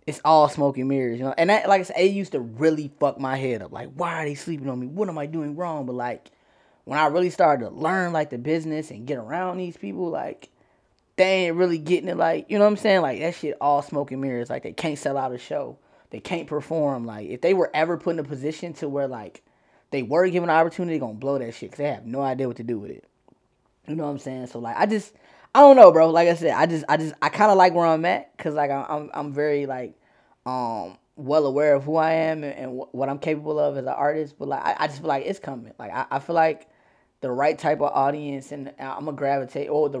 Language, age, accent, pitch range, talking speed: English, 10-29, American, 130-165 Hz, 275 wpm